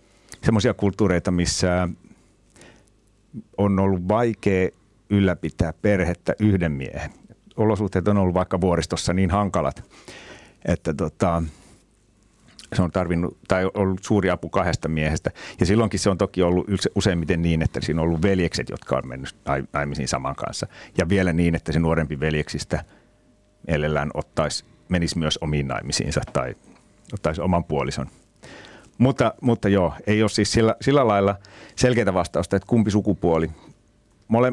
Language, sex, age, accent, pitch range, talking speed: Finnish, male, 60-79, native, 85-105 Hz, 135 wpm